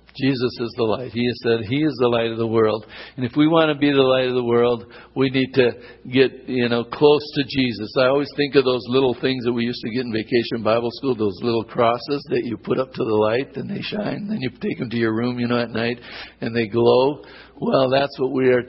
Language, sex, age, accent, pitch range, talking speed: English, male, 60-79, American, 115-135 Hz, 265 wpm